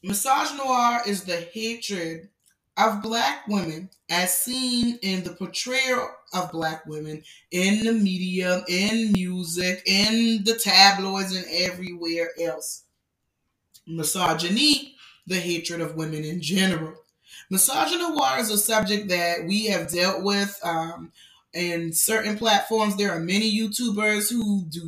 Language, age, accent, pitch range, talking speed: English, 20-39, American, 170-220 Hz, 125 wpm